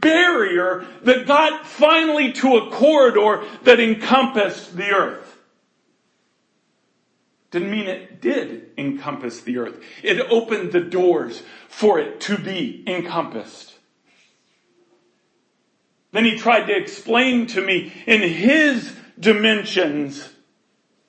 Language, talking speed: English, 105 wpm